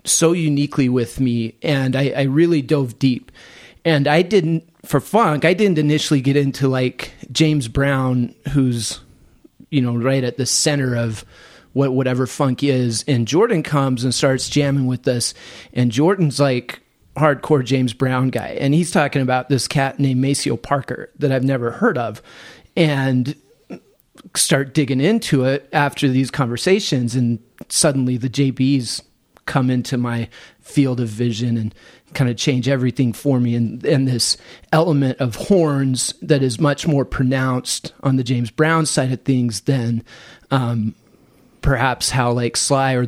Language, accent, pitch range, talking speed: English, American, 125-150 Hz, 160 wpm